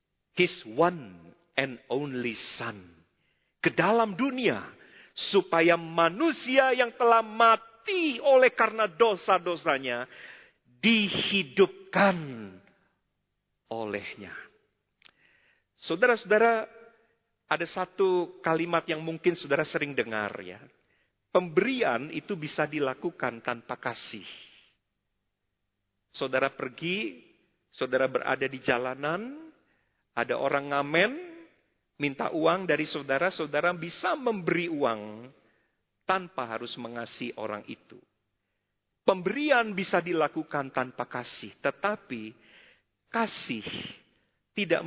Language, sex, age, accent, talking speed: Indonesian, male, 50-69, native, 85 wpm